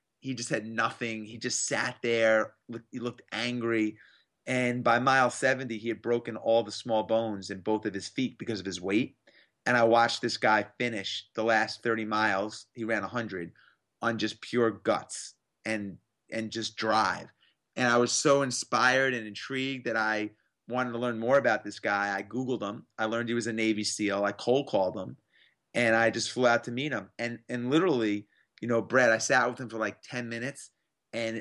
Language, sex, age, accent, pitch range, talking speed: English, male, 30-49, American, 110-125 Hz, 205 wpm